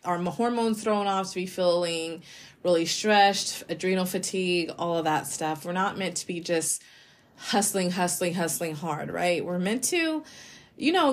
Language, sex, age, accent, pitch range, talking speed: English, female, 20-39, American, 185-235 Hz, 165 wpm